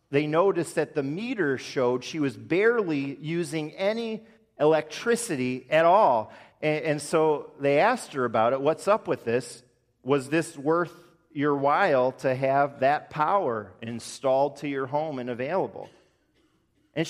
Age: 40-59